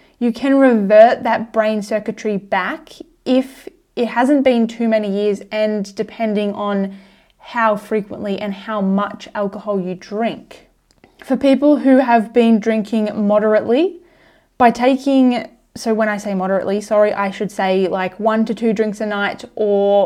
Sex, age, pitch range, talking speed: female, 20-39, 205-240 Hz, 155 wpm